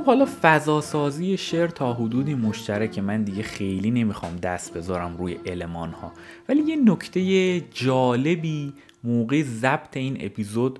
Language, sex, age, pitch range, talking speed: Persian, male, 30-49, 100-145 Hz, 135 wpm